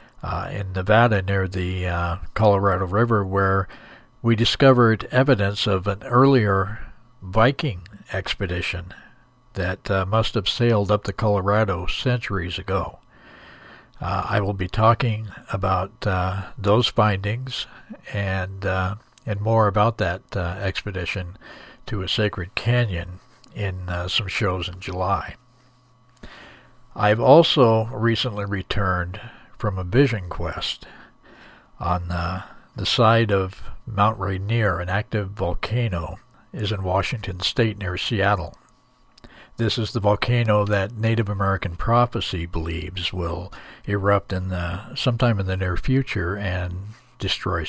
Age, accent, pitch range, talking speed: 60-79, American, 95-115 Hz, 125 wpm